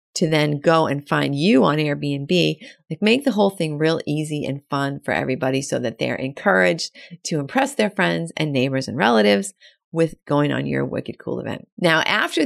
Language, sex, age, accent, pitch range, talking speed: English, female, 30-49, American, 145-185 Hz, 195 wpm